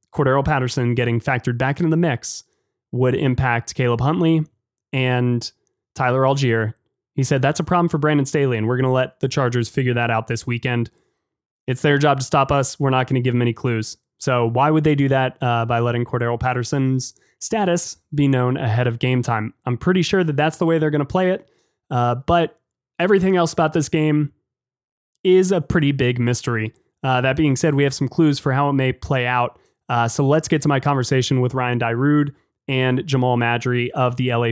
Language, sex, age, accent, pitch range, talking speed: English, male, 20-39, American, 120-145 Hz, 210 wpm